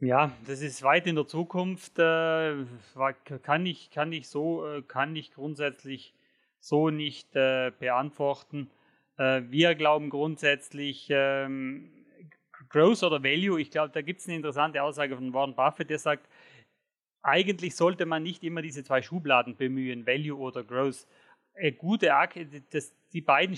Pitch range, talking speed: 140-170 Hz, 130 wpm